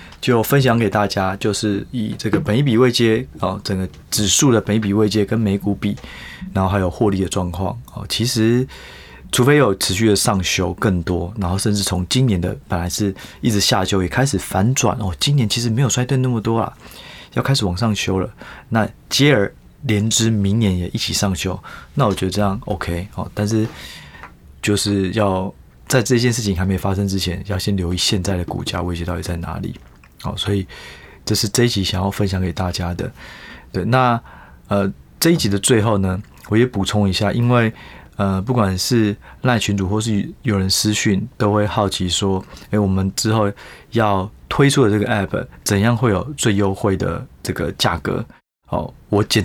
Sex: male